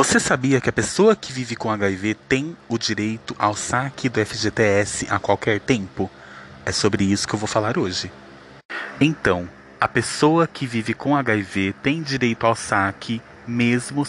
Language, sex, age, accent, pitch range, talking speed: Portuguese, male, 20-39, Brazilian, 100-130 Hz, 165 wpm